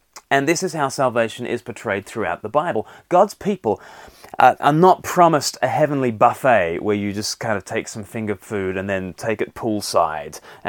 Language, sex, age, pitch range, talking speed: English, male, 30-49, 115-155 Hz, 180 wpm